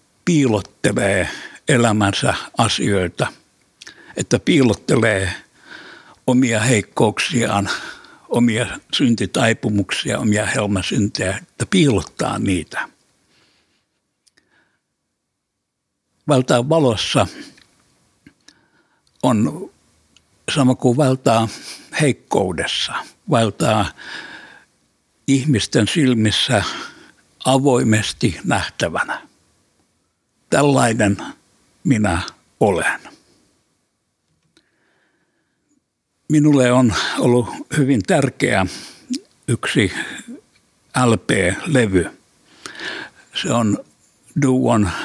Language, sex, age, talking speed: Finnish, male, 60-79, 50 wpm